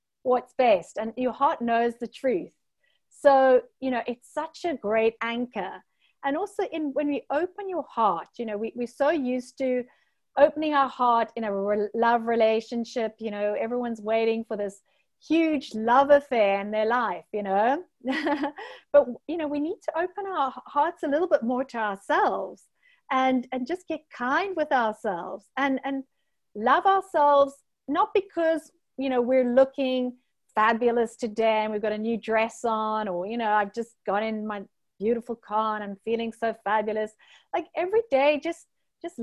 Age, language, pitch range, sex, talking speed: 40-59, English, 220-290 Hz, female, 170 wpm